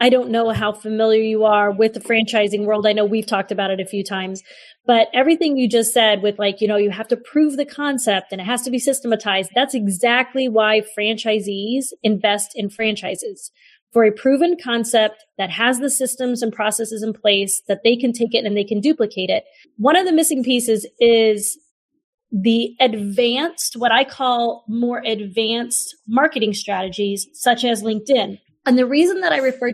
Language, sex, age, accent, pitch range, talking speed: English, female, 30-49, American, 210-255 Hz, 190 wpm